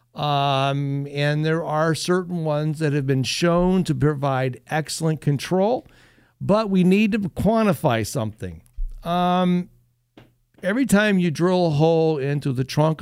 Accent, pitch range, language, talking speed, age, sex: American, 135-170 Hz, English, 140 wpm, 60-79, male